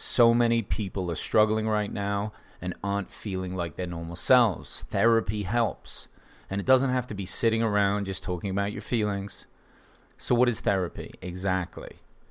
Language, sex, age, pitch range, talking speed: English, male, 30-49, 95-115 Hz, 165 wpm